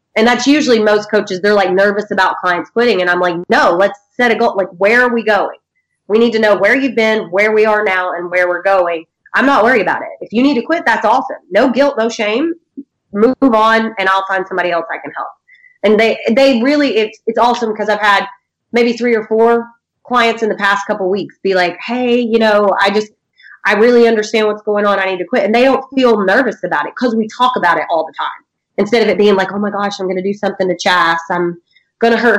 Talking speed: 255 wpm